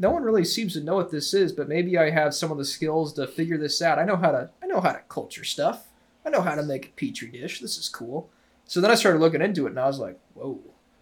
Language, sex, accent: English, male, American